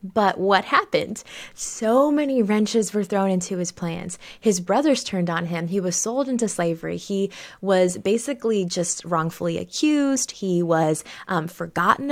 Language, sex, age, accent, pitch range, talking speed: English, female, 20-39, American, 195-255 Hz, 155 wpm